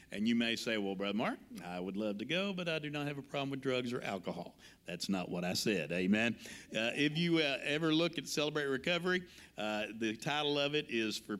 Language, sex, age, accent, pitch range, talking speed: English, male, 50-69, American, 110-155 Hz, 235 wpm